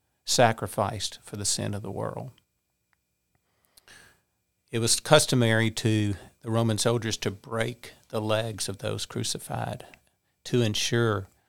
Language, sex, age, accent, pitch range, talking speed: English, male, 50-69, American, 100-120 Hz, 120 wpm